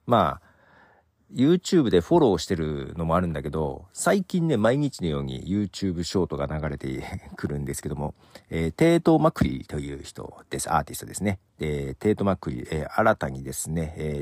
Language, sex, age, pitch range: Japanese, male, 50-69, 75-110 Hz